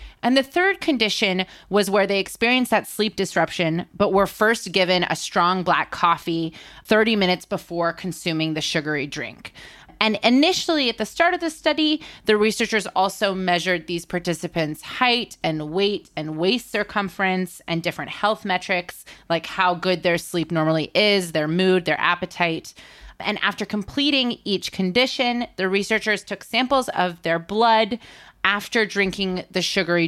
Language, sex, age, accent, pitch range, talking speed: English, female, 20-39, American, 175-225 Hz, 155 wpm